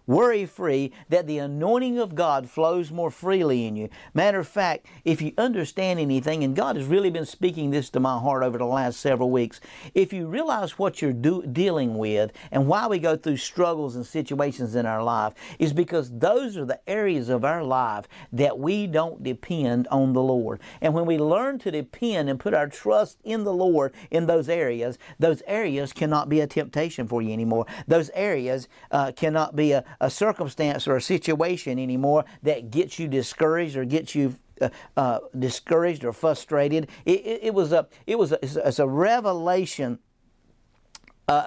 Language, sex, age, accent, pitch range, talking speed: English, male, 50-69, American, 135-175 Hz, 185 wpm